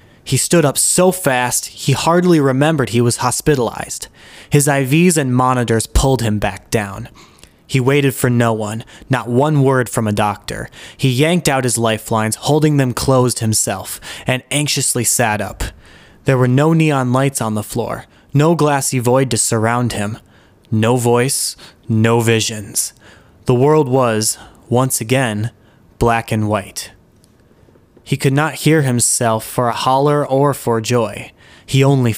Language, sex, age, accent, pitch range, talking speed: English, male, 20-39, American, 110-140 Hz, 155 wpm